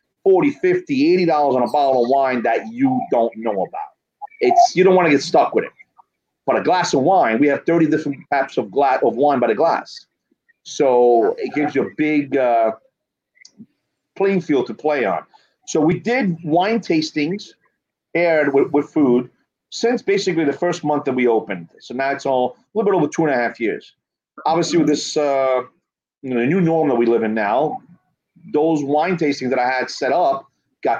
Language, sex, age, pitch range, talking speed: English, male, 40-59, 130-185 Hz, 205 wpm